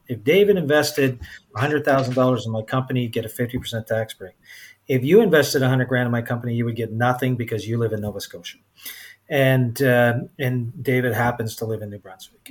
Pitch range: 115-135 Hz